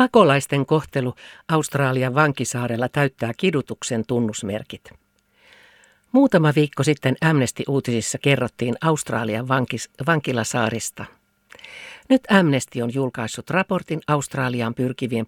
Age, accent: 50-69, native